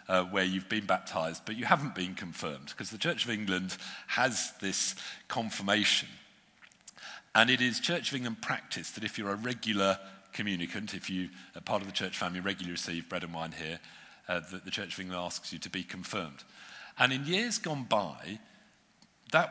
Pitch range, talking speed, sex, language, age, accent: 90-110 Hz, 190 wpm, male, English, 50-69, British